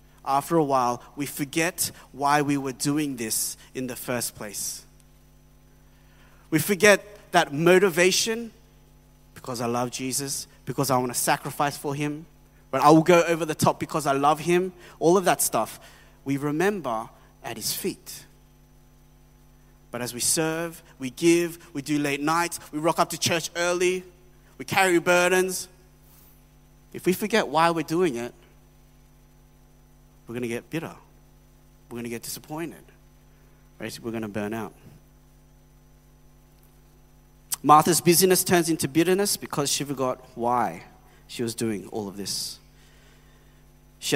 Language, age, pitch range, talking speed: English, 30-49, 125-170 Hz, 145 wpm